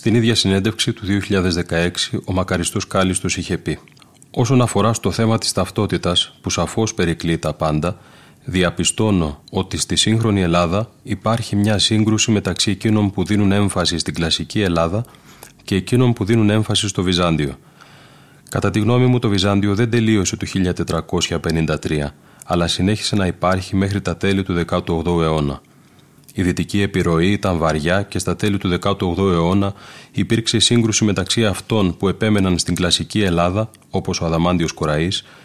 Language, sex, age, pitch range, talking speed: Greek, male, 30-49, 85-110 Hz, 150 wpm